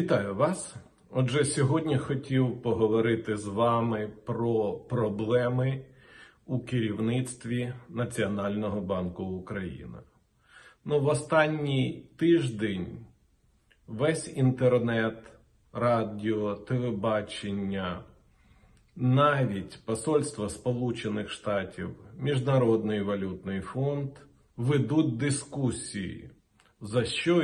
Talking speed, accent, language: 70 wpm, native, Ukrainian